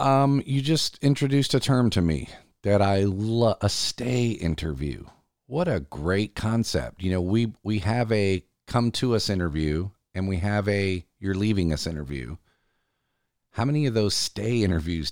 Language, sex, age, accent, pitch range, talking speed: English, male, 40-59, American, 85-110 Hz, 165 wpm